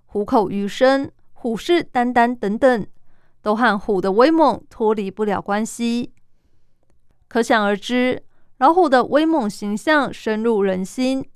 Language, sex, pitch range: Chinese, female, 205-255 Hz